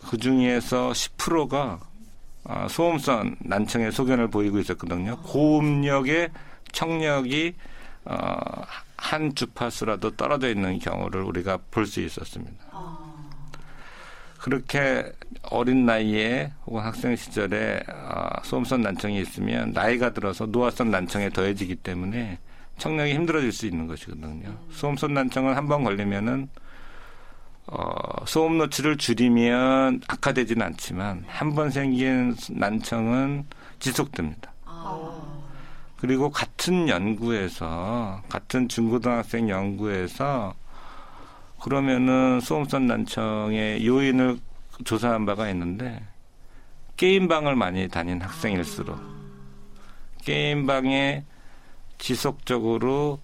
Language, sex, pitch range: Korean, male, 105-140 Hz